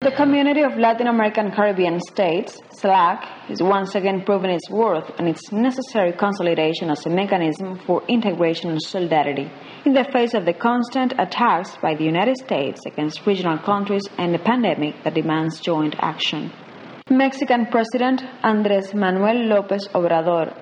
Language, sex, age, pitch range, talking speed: English, female, 30-49, 165-230 Hz, 150 wpm